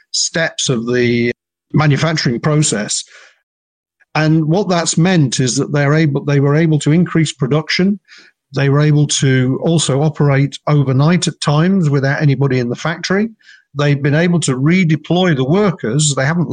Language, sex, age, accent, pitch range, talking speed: English, male, 50-69, British, 135-160 Hz, 155 wpm